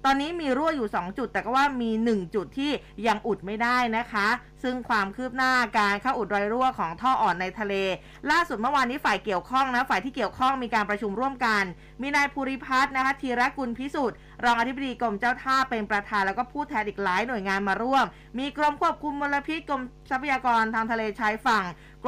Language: Thai